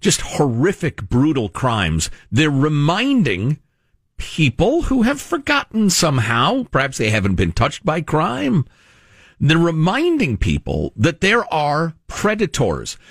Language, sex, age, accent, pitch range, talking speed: English, male, 50-69, American, 110-175 Hz, 115 wpm